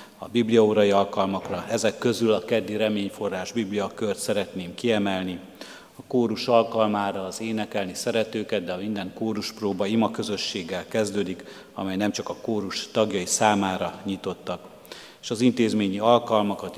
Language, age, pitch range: Hungarian, 50-69, 95-110 Hz